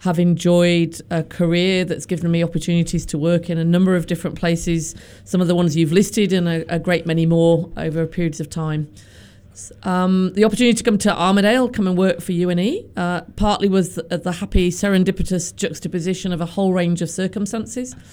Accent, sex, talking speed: British, female, 190 wpm